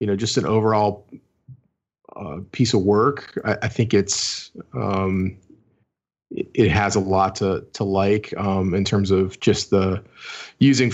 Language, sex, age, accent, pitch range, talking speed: English, male, 30-49, American, 95-110 Hz, 160 wpm